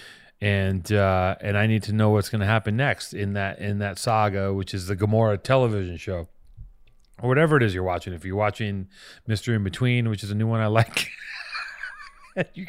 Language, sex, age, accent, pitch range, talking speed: English, male, 30-49, American, 105-135 Hz, 205 wpm